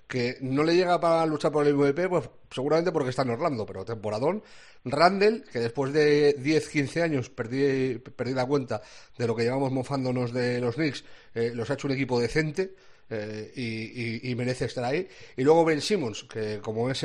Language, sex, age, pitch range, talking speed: Spanish, male, 40-59, 120-150 Hz, 195 wpm